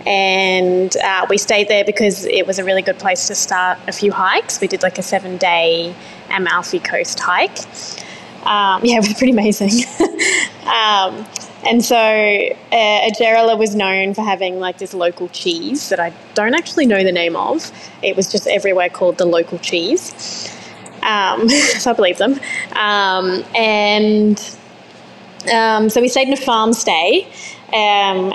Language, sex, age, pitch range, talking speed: English, female, 20-39, 185-230 Hz, 160 wpm